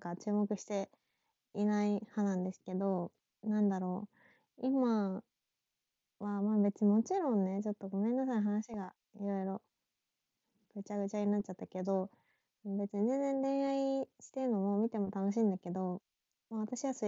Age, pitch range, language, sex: 20-39, 195-245 Hz, Japanese, female